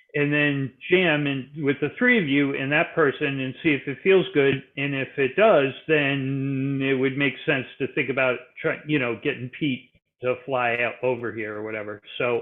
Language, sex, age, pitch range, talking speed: English, male, 40-59, 125-155 Hz, 210 wpm